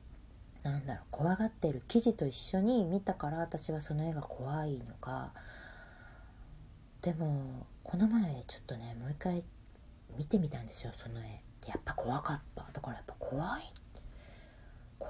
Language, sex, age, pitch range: Japanese, female, 40-59, 120-170 Hz